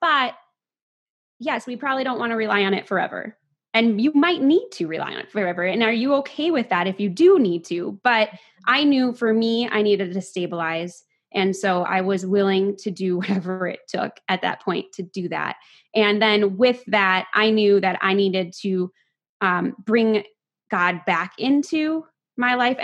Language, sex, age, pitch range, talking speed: English, female, 20-39, 185-225 Hz, 190 wpm